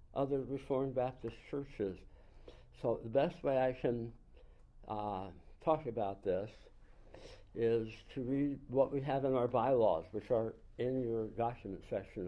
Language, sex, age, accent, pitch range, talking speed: English, male, 60-79, American, 105-135 Hz, 140 wpm